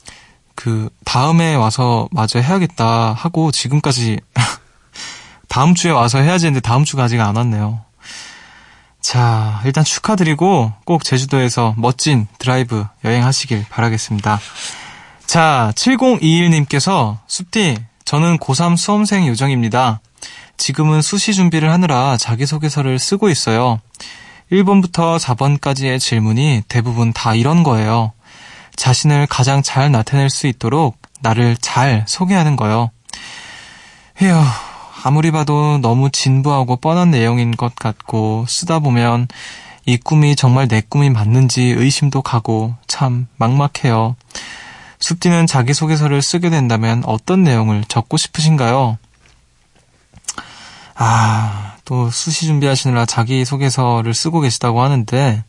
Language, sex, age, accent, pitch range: Korean, male, 20-39, native, 115-155 Hz